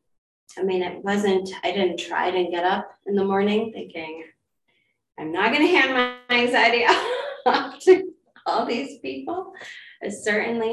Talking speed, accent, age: 155 wpm, American, 30-49